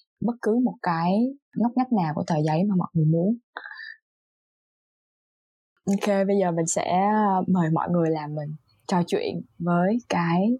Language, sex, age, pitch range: Vietnamese, female, 20-39, 160-200 Hz